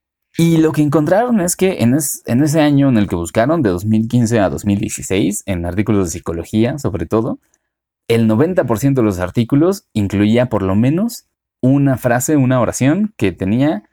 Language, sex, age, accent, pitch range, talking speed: Spanish, male, 30-49, Mexican, 90-115 Hz, 170 wpm